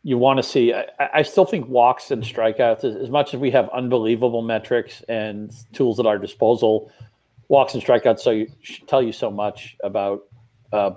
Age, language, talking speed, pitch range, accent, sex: 40-59, English, 180 wpm, 105-125 Hz, American, male